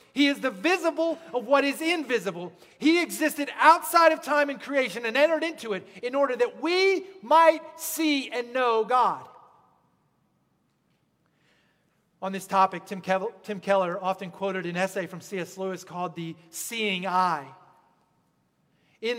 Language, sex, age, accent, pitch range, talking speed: English, male, 40-59, American, 190-255 Hz, 145 wpm